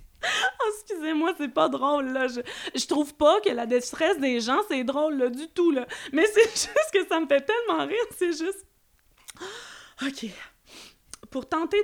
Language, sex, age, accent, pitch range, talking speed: French, female, 20-39, Canadian, 275-385 Hz, 170 wpm